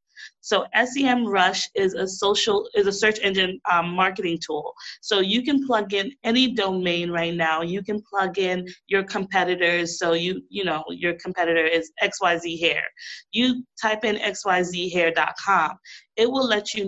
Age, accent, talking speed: 30-49, American, 160 wpm